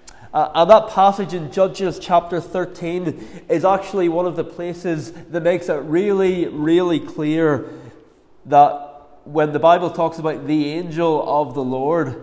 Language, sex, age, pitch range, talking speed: English, male, 20-39, 160-185 Hz, 150 wpm